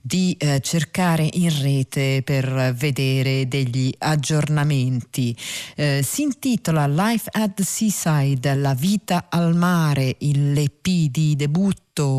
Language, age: Italian, 40-59